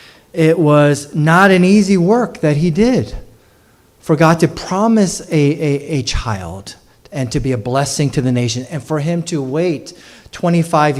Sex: male